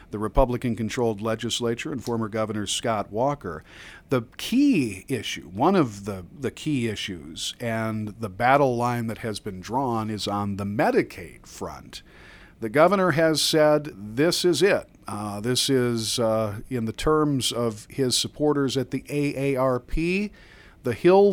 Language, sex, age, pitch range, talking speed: English, male, 50-69, 105-135 Hz, 145 wpm